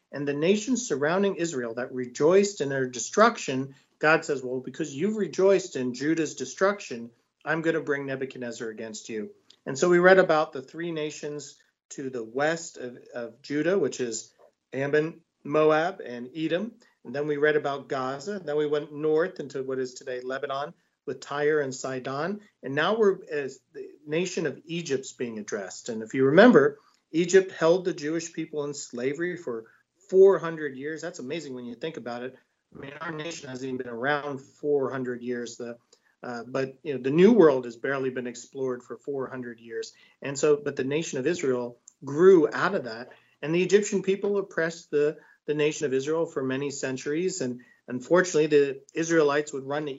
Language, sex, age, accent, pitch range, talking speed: English, male, 40-59, American, 130-165 Hz, 180 wpm